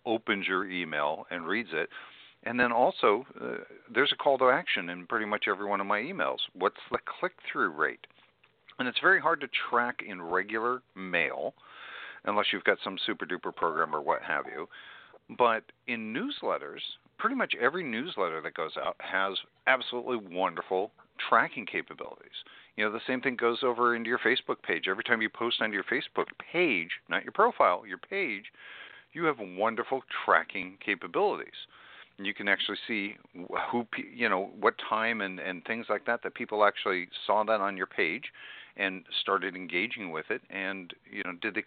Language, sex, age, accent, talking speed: English, male, 50-69, American, 175 wpm